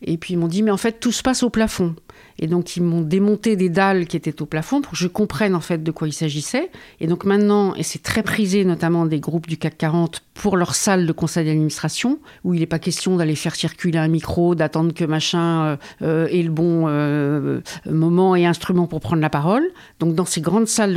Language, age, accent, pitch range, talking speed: French, 50-69, French, 165-200 Hz, 240 wpm